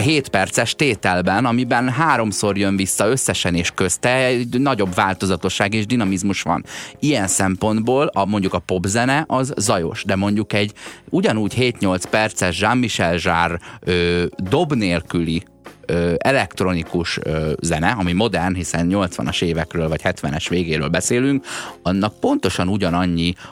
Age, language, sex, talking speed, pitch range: 30-49, Hungarian, male, 125 wpm, 90-105 Hz